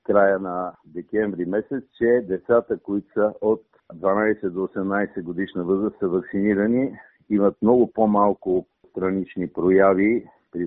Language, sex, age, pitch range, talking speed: Bulgarian, male, 50-69, 95-115 Hz, 125 wpm